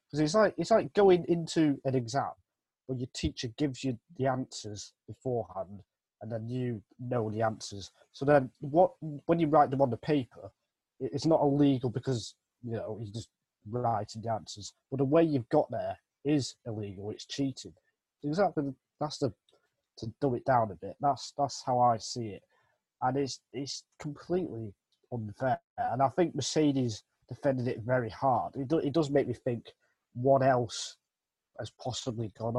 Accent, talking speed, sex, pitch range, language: British, 175 wpm, male, 110-135 Hz, English